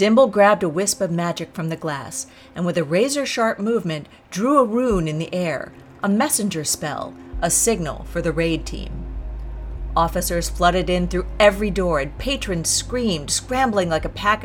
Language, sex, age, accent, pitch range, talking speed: English, female, 40-59, American, 135-195 Hz, 175 wpm